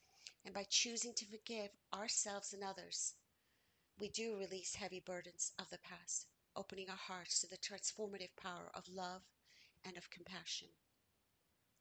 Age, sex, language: 50-69, female, English